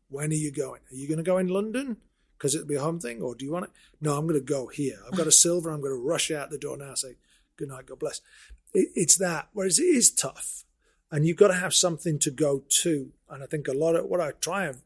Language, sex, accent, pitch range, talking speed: English, male, British, 135-165 Hz, 285 wpm